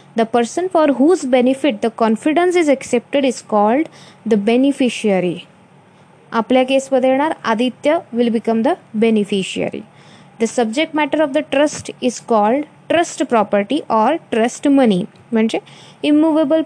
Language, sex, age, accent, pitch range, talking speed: Marathi, female, 20-39, native, 220-280 Hz, 135 wpm